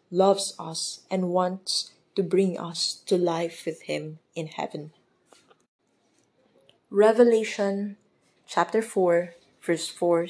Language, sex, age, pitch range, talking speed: English, female, 20-39, 165-205 Hz, 105 wpm